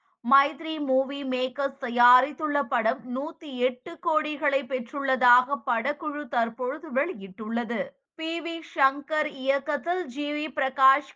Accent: native